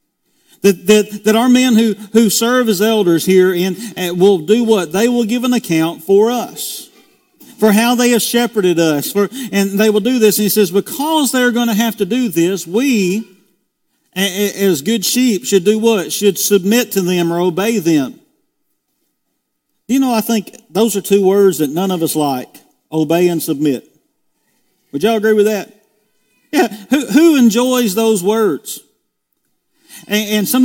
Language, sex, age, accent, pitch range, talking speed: English, male, 50-69, American, 185-240 Hz, 175 wpm